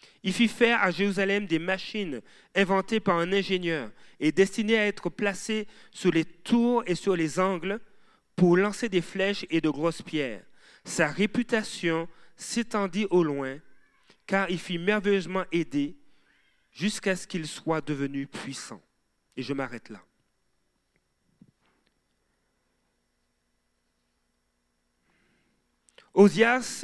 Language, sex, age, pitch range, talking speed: French, male, 40-59, 150-220 Hz, 115 wpm